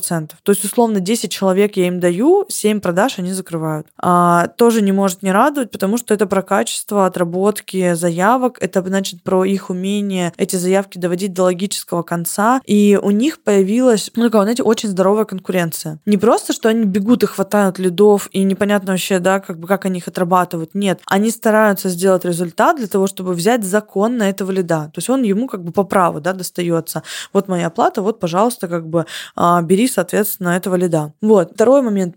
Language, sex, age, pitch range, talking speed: Russian, female, 20-39, 185-215 Hz, 190 wpm